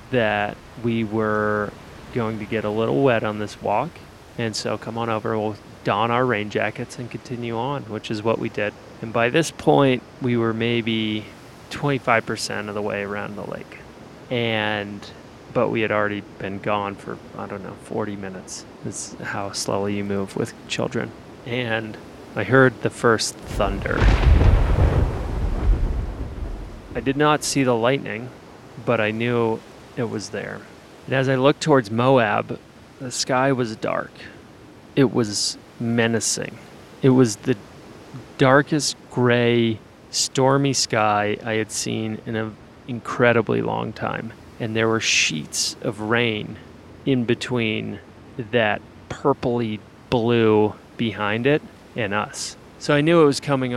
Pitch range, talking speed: 105-125 Hz, 145 wpm